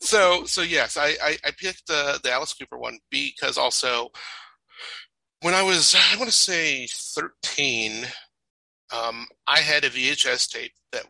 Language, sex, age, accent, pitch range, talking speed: English, male, 40-59, American, 125-185 Hz, 155 wpm